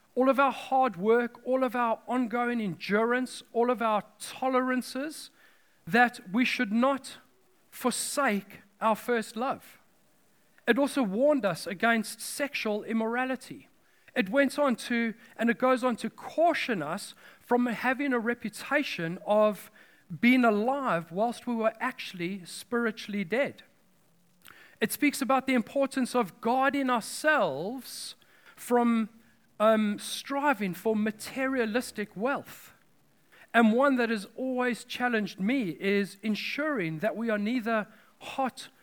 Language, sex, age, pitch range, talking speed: English, male, 40-59, 220-265 Hz, 125 wpm